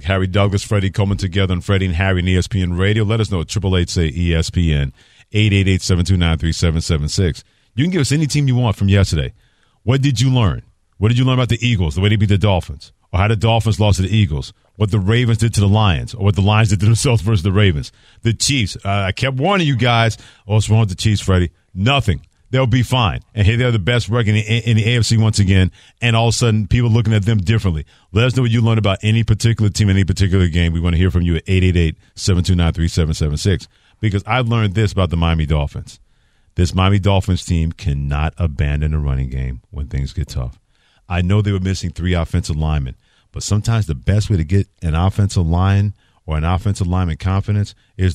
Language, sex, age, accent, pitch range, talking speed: English, male, 40-59, American, 90-110 Hz, 220 wpm